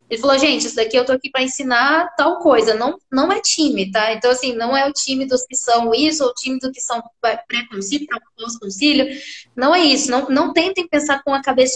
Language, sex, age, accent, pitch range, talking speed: Portuguese, female, 10-29, Brazilian, 235-295 Hz, 235 wpm